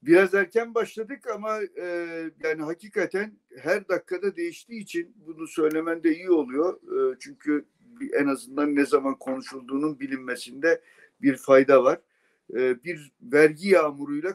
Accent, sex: native, male